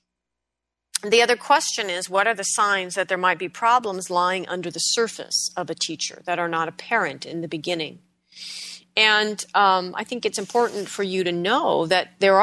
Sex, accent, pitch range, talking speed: female, American, 160-200 Hz, 190 wpm